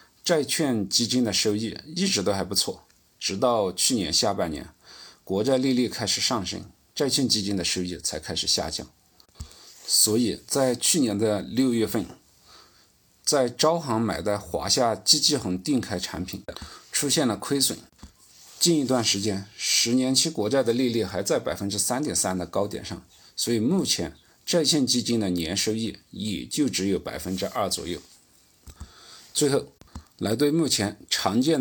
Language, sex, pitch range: Chinese, male, 95-130 Hz